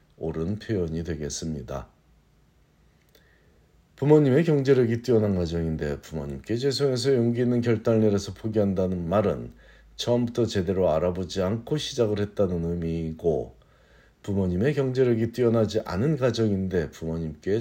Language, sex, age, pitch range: Korean, male, 50-69, 90-120 Hz